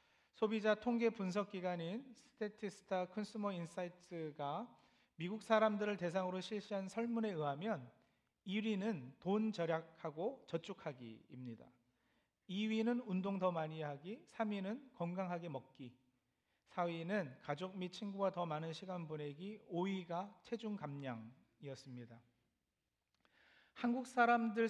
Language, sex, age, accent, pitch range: Korean, male, 40-59, native, 150-205 Hz